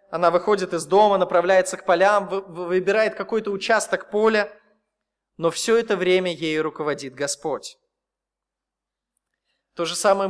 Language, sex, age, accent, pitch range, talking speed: Russian, male, 20-39, native, 180-225 Hz, 120 wpm